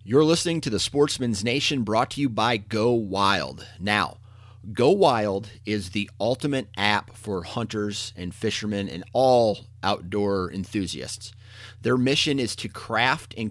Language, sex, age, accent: English, male, 30-49, American